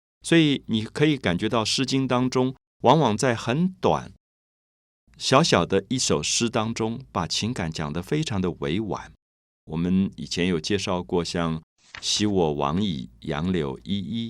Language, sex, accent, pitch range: Chinese, male, native, 85-120 Hz